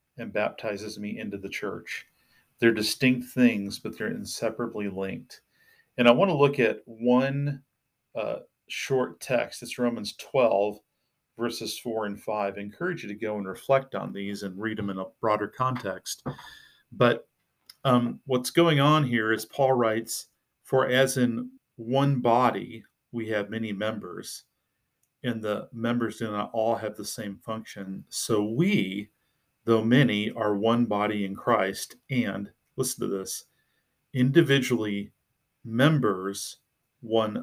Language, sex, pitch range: English, male, 105-130 Hz